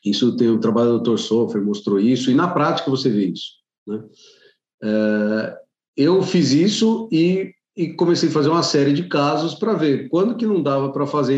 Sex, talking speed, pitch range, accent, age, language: male, 190 wpm, 125-165 Hz, Brazilian, 40-59, Portuguese